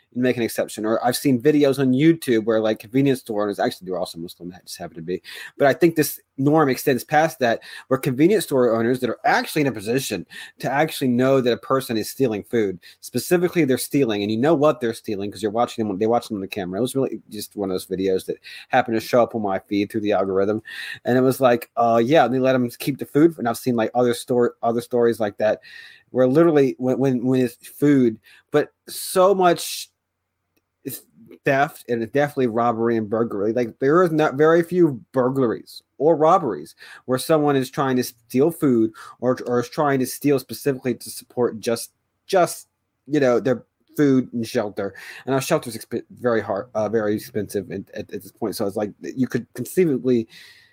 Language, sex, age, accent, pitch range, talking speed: English, male, 30-49, American, 110-140 Hz, 215 wpm